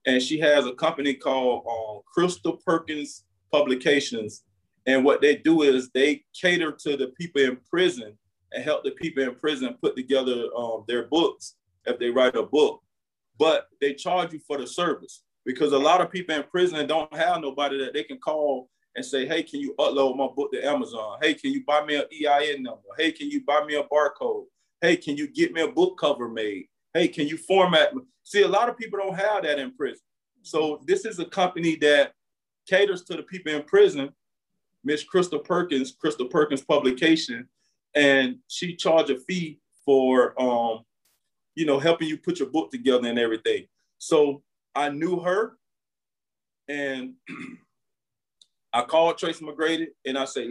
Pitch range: 135-175 Hz